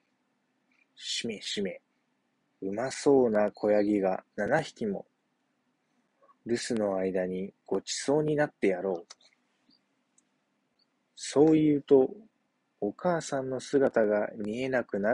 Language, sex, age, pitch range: Japanese, male, 20-39, 110-160 Hz